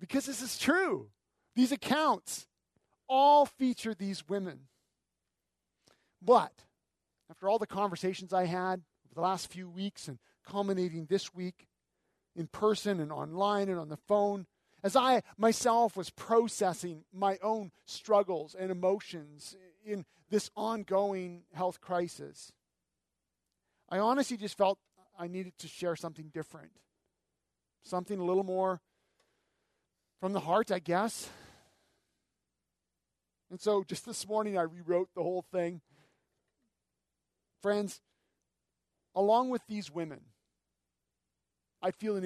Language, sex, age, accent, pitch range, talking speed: English, male, 40-59, American, 170-205 Hz, 120 wpm